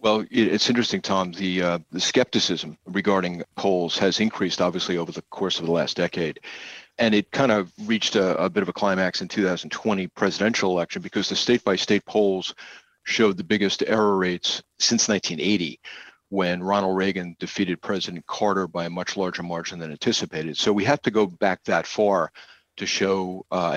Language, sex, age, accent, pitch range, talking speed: English, male, 40-59, American, 90-110 Hz, 175 wpm